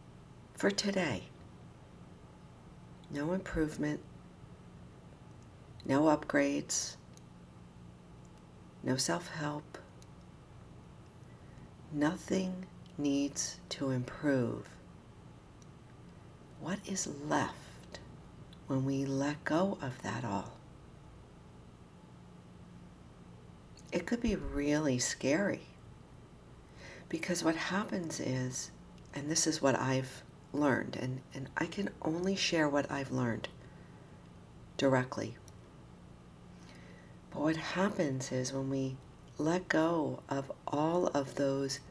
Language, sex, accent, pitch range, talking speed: English, female, American, 110-160 Hz, 85 wpm